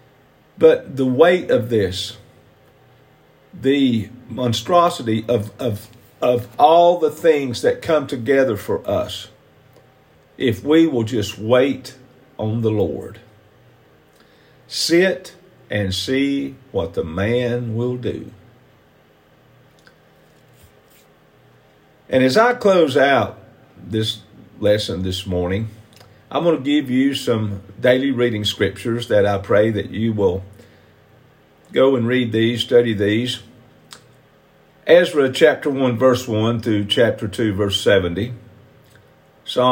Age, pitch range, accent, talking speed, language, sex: 50-69, 105-130 Hz, American, 110 wpm, English, male